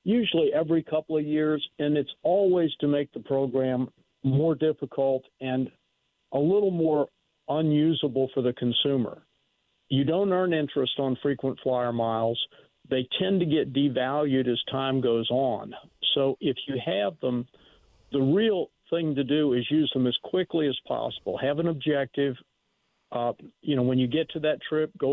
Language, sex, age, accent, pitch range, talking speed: English, male, 50-69, American, 130-150 Hz, 165 wpm